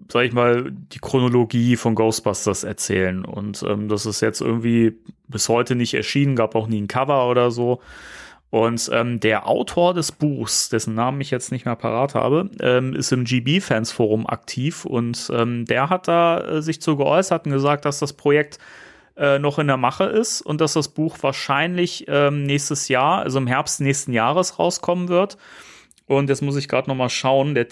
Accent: German